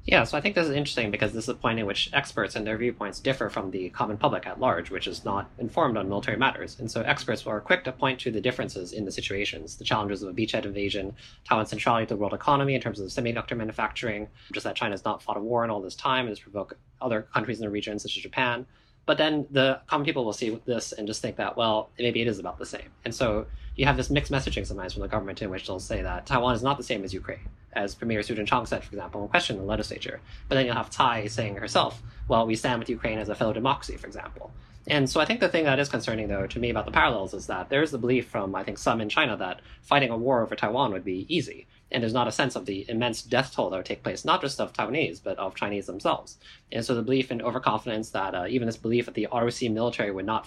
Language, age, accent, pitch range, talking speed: English, 20-39, American, 105-125 Hz, 270 wpm